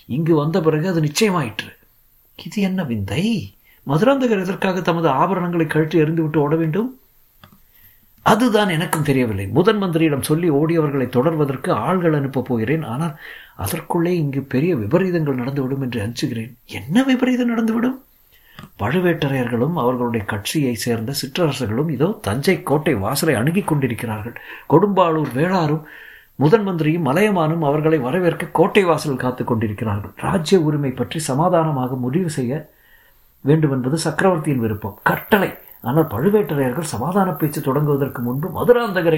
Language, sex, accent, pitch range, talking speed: Tamil, male, native, 135-185 Hz, 85 wpm